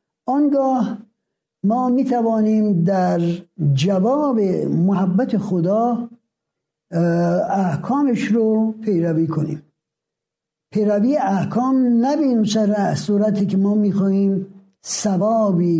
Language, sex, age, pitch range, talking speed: Persian, male, 60-79, 175-230 Hz, 75 wpm